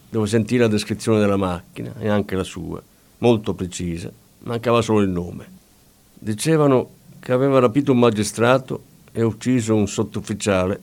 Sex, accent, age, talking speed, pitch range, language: male, native, 50-69, 145 wpm, 100-125 Hz, Italian